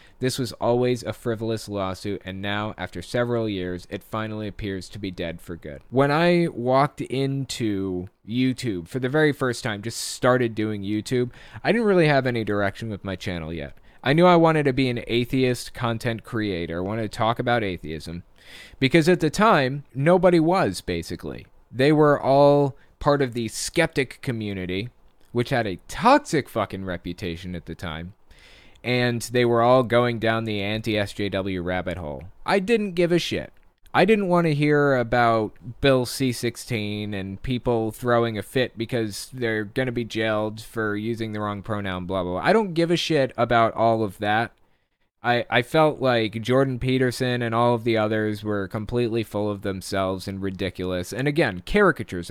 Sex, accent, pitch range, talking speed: male, American, 100-130 Hz, 175 wpm